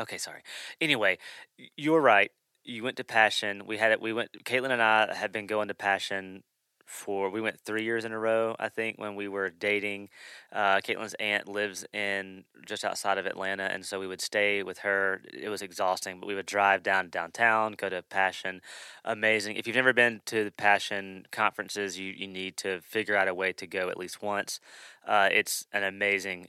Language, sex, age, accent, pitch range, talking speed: English, male, 30-49, American, 95-110 Hz, 205 wpm